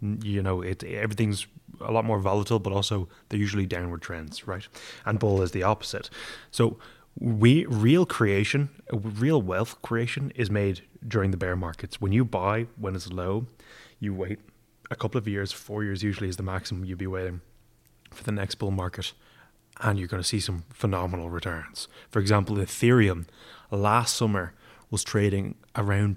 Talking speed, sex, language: 170 wpm, male, English